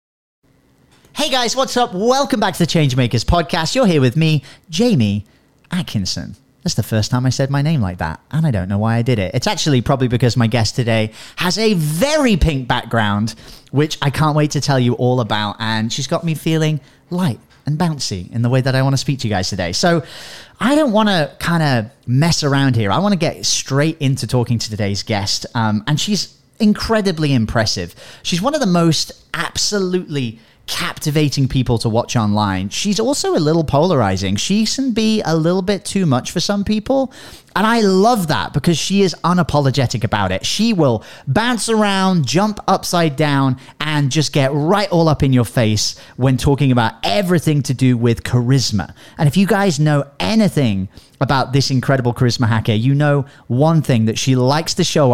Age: 30-49